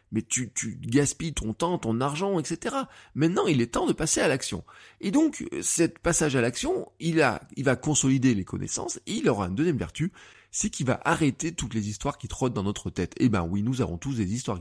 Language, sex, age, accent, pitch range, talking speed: French, male, 20-39, French, 115-160 Hz, 225 wpm